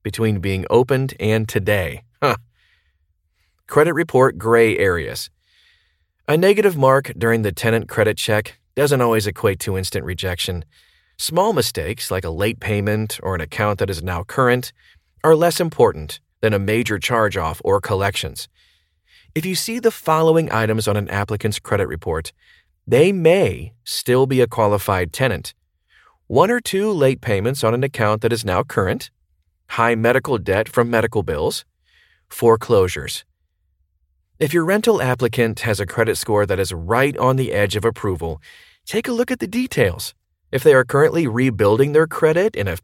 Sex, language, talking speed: male, English, 160 wpm